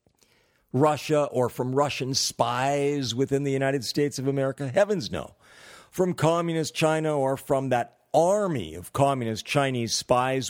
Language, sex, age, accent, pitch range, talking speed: English, male, 50-69, American, 110-140 Hz, 135 wpm